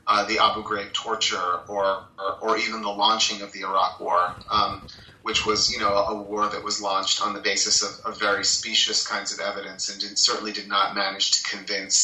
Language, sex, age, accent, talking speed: English, male, 30-49, American, 220 wpm